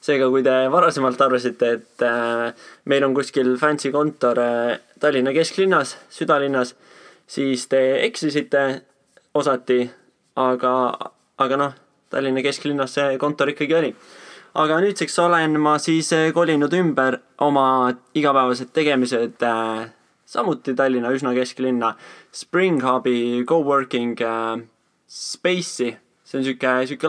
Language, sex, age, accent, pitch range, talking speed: English, male, 20-39, Finnish, 125-145 Hz, 105 wpm